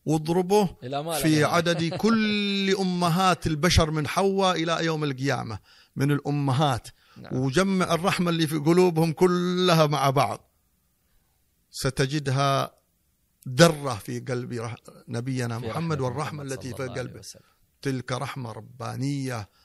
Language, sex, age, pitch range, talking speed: Arabic, male, 50-69, 125-170 Hz, 105 wpm